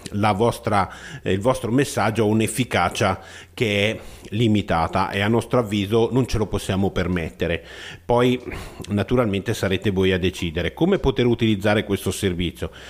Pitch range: 95-115 Hz